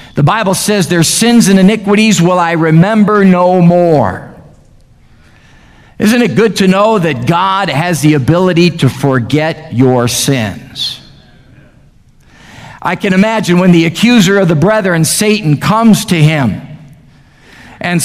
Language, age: English, 50-69